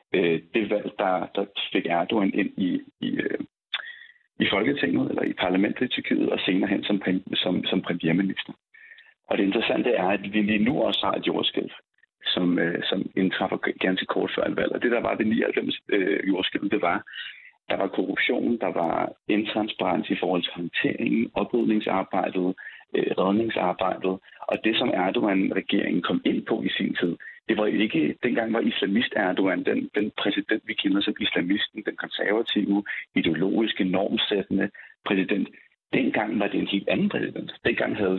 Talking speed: 160 wpm